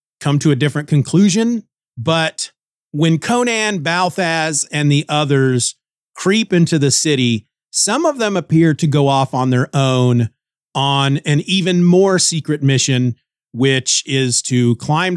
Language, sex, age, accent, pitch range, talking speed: English, male, 40-59, American, 130-165 Hz, 140 wpm